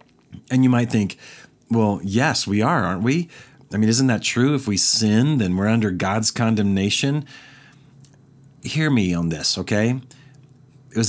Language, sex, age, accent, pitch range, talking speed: English, male, 40-59, American, 110-140 Hz, 155 wpm